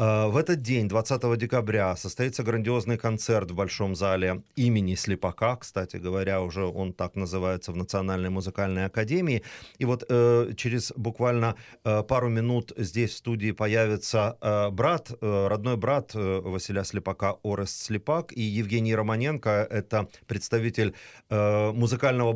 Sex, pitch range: male, 100-120 Hz